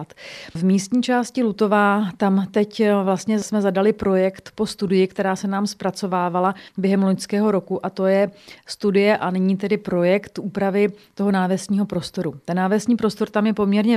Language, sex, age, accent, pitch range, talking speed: Czech, female, 30-49, native, 185-210 Hz, 160 wpm